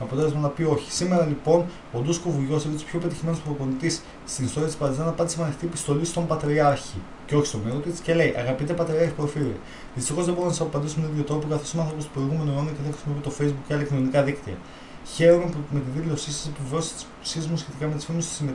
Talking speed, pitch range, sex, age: 160 wpm, 140-160 Hz, male, 20-39